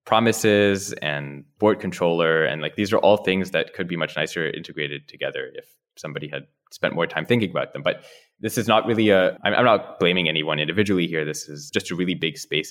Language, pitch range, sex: English, 80-105 Hz, male